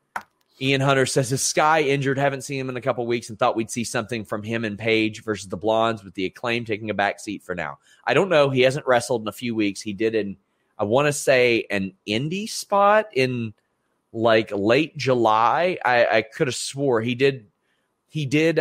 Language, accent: English, American